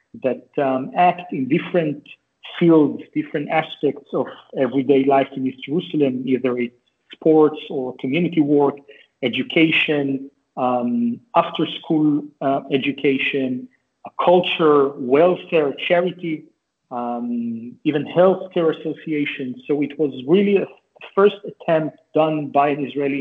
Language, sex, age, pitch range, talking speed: English, male, 40-59, 135-165 Hz, 115 wpm